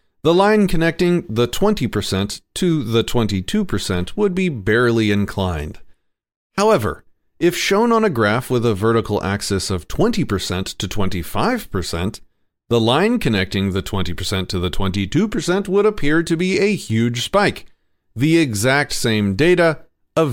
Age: 40-59